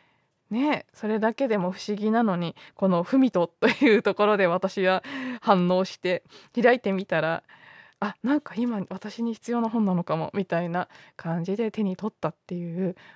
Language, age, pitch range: Japanese, 20-39, 175-230 Hz